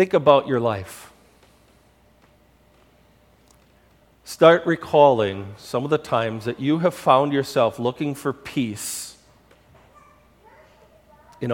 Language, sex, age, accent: English, male, 50-69, American